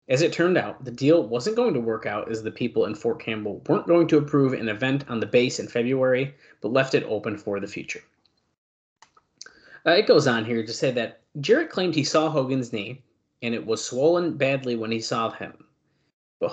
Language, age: English, 30-49